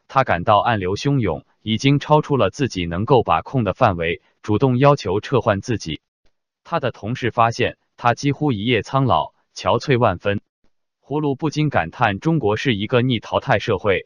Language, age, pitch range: Chinese, 20-39, 105-140 Hz